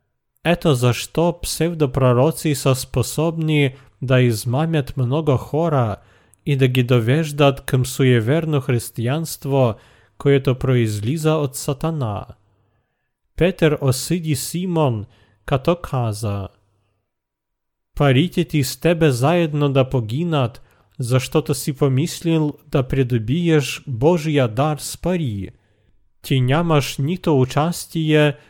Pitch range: 120-155 Hz